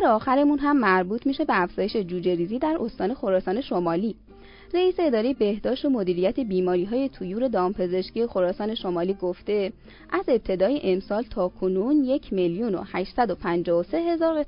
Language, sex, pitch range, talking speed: Persian, female, 190-280 Hz, 125 wpm